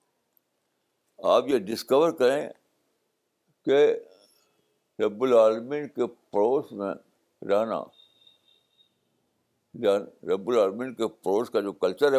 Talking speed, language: 75 wpm, Urdu